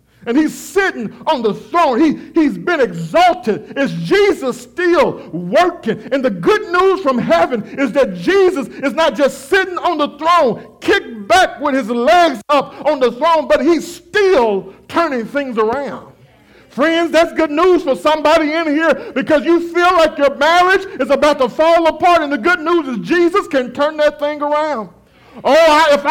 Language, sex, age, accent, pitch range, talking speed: English, male, 50-69, American, 275-350 Hz, 175 wpm